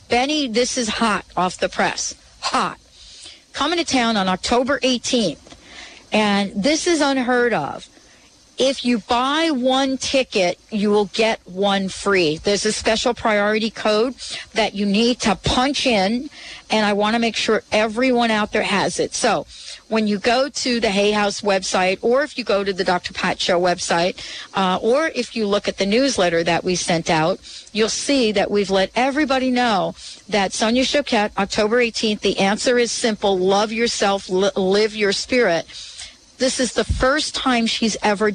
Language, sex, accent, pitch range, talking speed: English, female, American, 195-245 Hz, 170 wpm